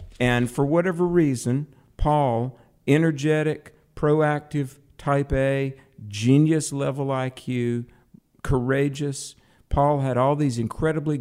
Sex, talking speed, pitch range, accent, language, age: male, 90 wpm, 115-150 Hz, American, English, 50-69